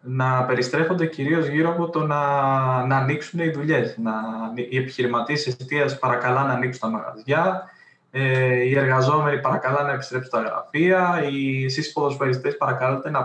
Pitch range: 130-150 Hz